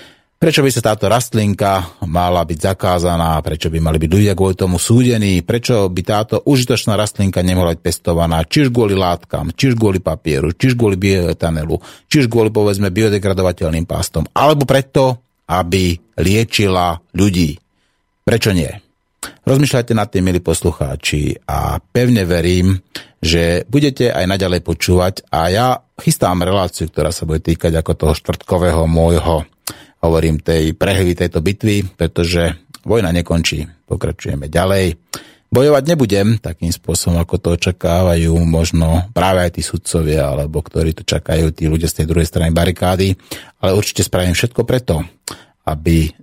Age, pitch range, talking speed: 30-49, 85-100 Hz, 145 wpm